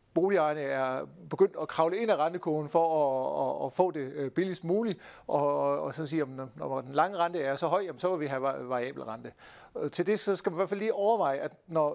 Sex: male